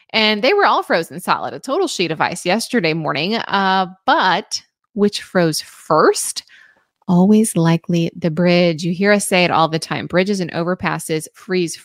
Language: English